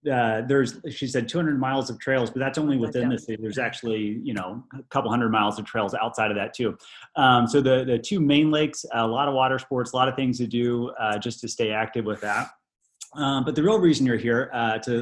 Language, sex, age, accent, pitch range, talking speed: English, male, 30-49, American, 110-135 Hz, 250 wpm